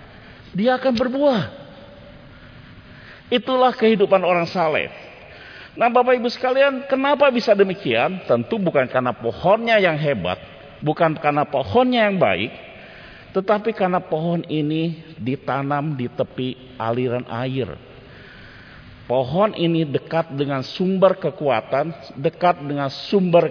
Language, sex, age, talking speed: Indonesian, male, 50-69, 110 wpm